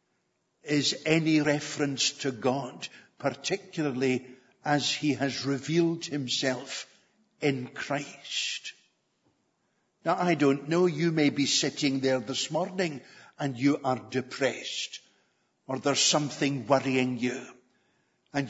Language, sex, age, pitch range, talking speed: English, male, 60-79, 135-160 Hz, 110 wpm